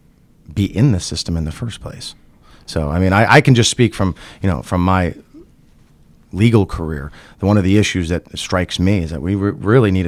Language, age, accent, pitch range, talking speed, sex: English, 40-59, American, 80-95 Hz, 215 wpm, male